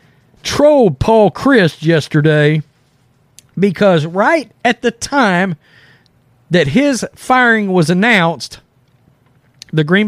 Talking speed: 95 wpm